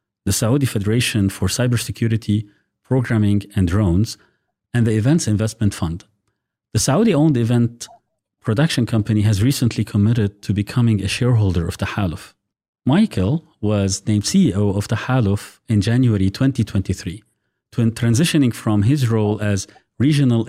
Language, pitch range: English, 100-125 Hz